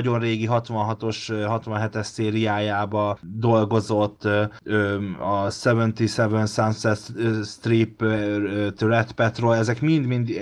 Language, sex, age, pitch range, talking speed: Hungarian, male, 30-49, 100-115 Hz, 85 wpm